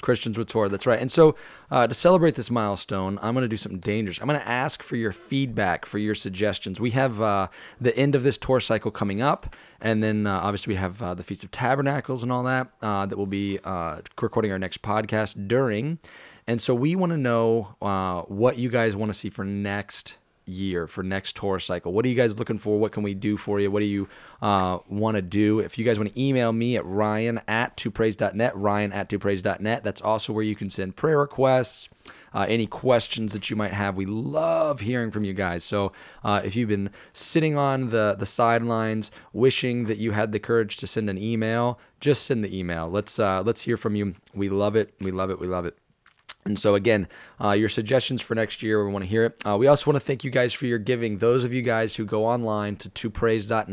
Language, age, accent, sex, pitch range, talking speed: English, 20-39, American, male, 100-120 Hz, 240 wpm